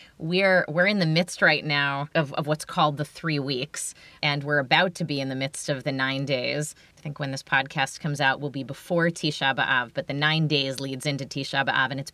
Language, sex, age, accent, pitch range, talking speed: English, female, 20-39, American, 145-180 Hz, 235 wpm